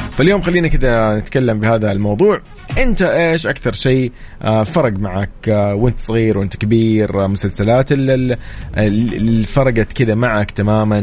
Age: 30-49